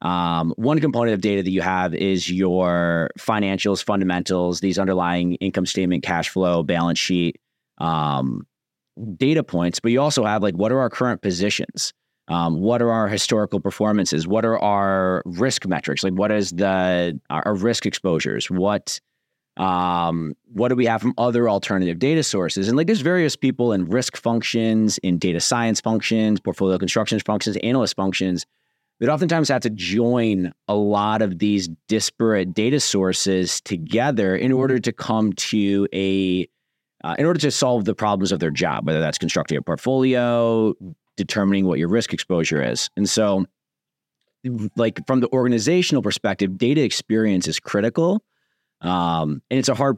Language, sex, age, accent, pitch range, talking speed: English, male, 30-49, American, 90-115 Hz, 165 wpm